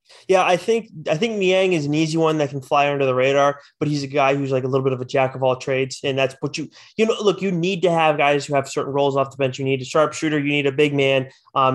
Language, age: English, 20-39